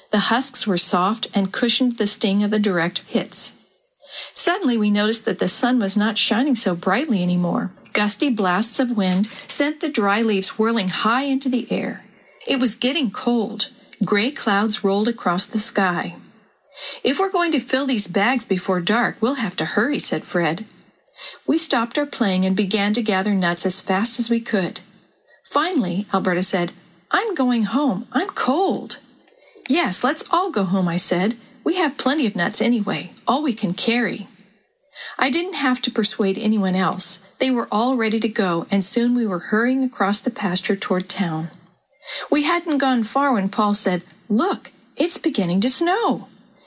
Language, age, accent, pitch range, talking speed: English, 50-69, American, 195-260 Hz, 175 wpm